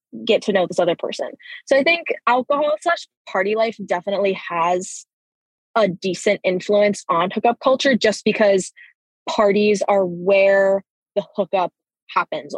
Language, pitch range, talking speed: English, 195-235 Hz, 140 wpm